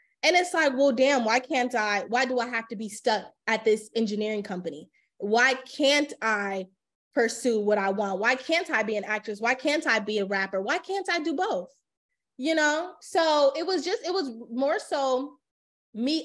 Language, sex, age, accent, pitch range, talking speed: English, female, 20-39, American, 210-275 Hz, 200 wpm